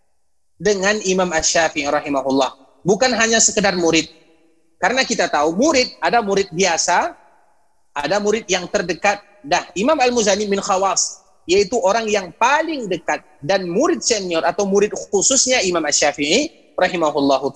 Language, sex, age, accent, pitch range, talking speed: Indonesian, male, 30-49, native, 155-220 Hz, 130 wpm